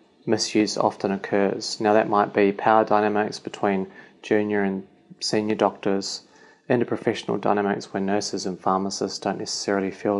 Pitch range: 100-115 Hz